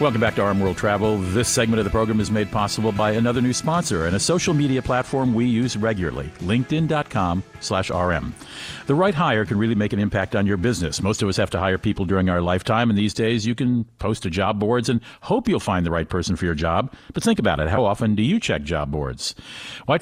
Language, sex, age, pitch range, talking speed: English, male, 50-69, 95-125 Hz, 245 wpm